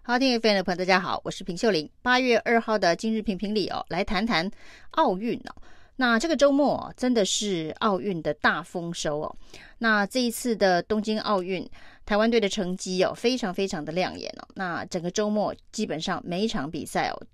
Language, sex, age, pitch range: Chinese, female, 30-49, 185-235 Hz